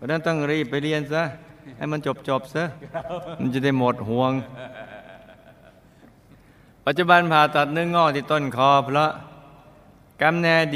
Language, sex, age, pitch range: Thai, male, 60-79, 105-140 Hz